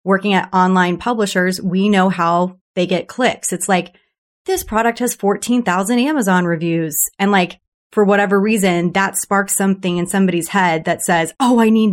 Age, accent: 30-49, American